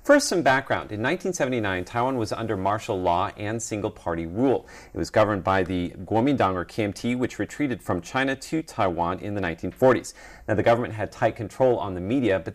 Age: 40-59